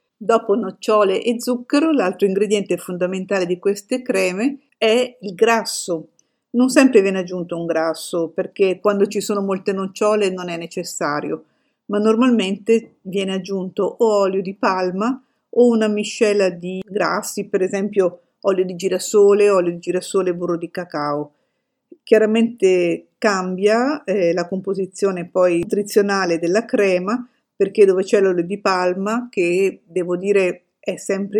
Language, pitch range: Italian, 180-215 Hz